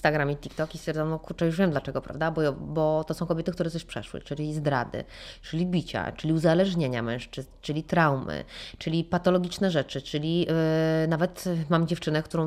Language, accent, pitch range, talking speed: Polish, native, 165-215 Hz, 175 wpm